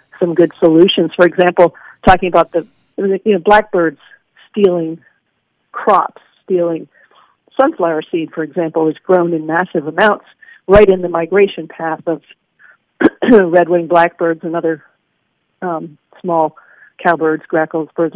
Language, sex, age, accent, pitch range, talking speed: English, female, 50-69, American, 165-200 Hz, 125 wpm